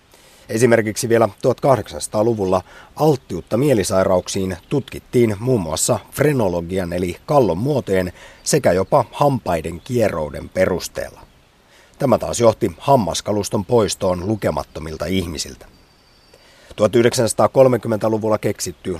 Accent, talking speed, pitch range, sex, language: native, 80 wpm, 90-120 Hz, male, Finnish